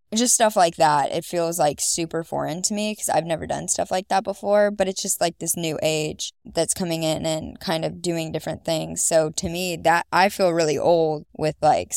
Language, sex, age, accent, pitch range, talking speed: English, female, 10-29, American, 160-190 Hz, 225 wpm